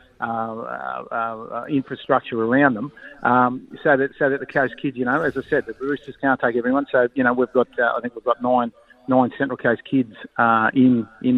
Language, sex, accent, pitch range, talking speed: English, male, Australian, 120-135 Hz, 220 wpm